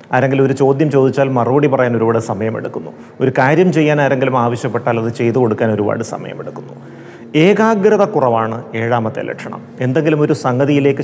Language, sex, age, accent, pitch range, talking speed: Malayalam, male, 30-49, native, 115-140 Hz, 135 wpm